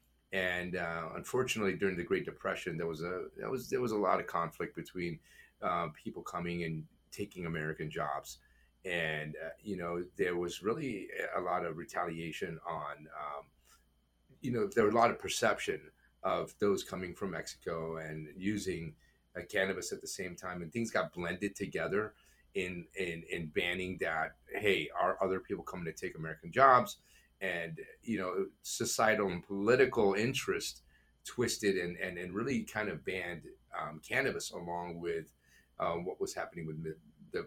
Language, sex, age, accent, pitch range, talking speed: English, male, 30-49, American, 80-100 Hz, 165 wpm